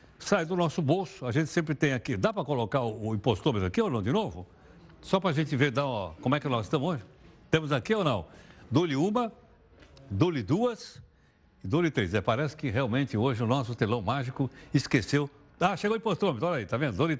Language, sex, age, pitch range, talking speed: Portuguese, male, 60-79, 125-175 Hz, 215 wpm